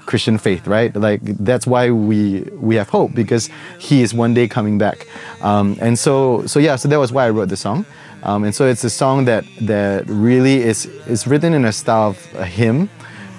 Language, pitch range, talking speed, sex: English, 100-120 Hz, 210 wpm, male